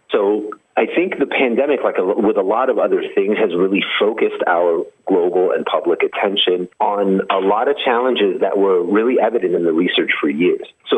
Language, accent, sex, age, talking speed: English, American, male, 30-49, 190 wpm